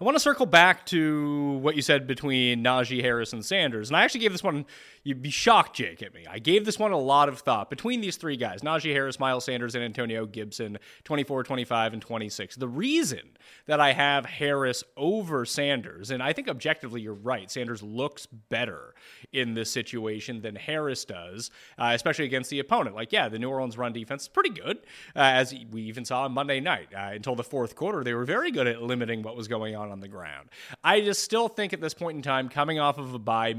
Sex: male